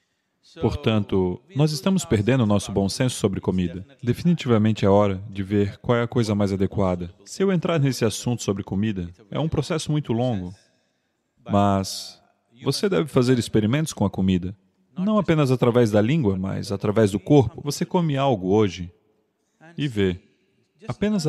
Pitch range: 100-130 Hz